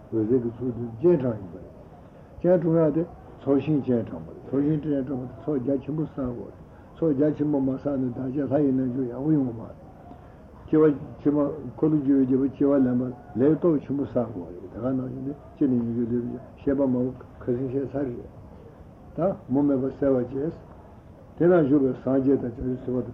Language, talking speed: Italian, 95 wpm